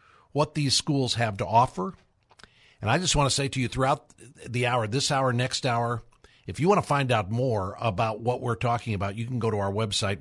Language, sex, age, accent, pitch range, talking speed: English, male, 50-69, American, 105-125 Hz, 230 wpm